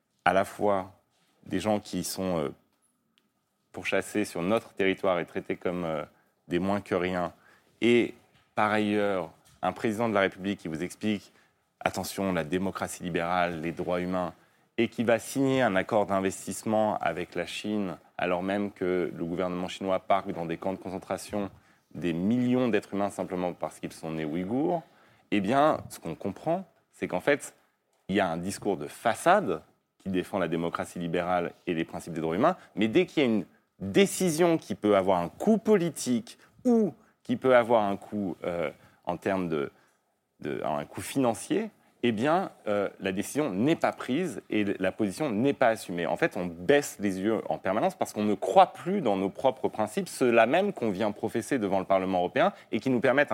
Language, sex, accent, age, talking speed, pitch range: French, male, French, 30-49, 185 wpm, 90-120 Hz